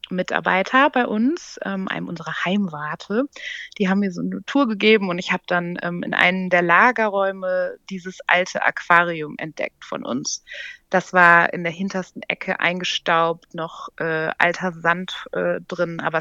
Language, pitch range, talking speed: German, 175-215 Hz, 160 wpm